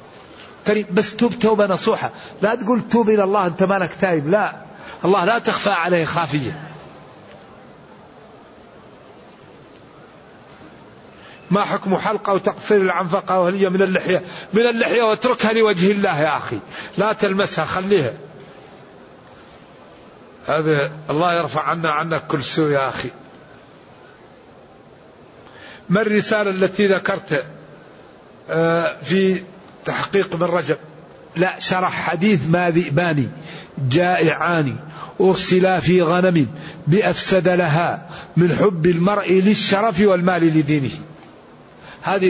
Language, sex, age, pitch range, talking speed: English, male, 60-79, 175-210 Hz, 100 wpm